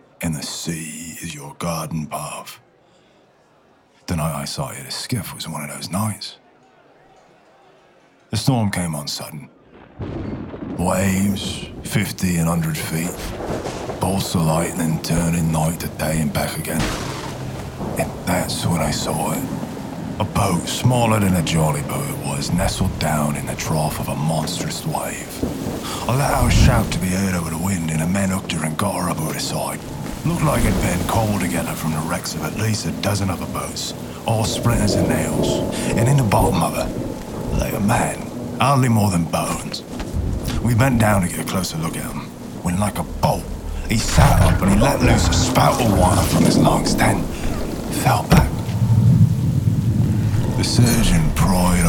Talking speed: 180 wpm